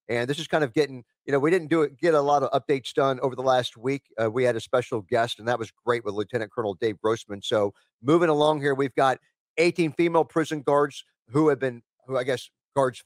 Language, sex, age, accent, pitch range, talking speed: English, male, 50-69, American, 135-180 Hz, 250 wpm